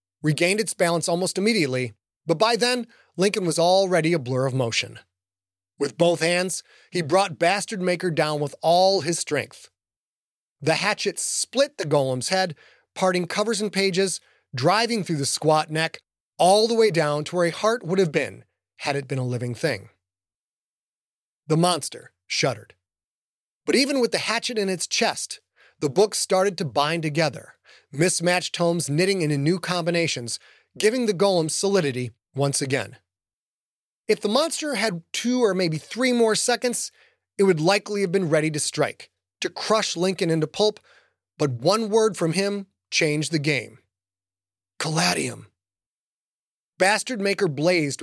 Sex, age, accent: male, 30-49, American